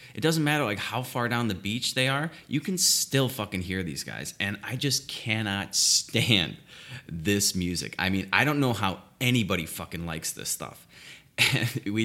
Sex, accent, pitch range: male, American, 95-120 Hz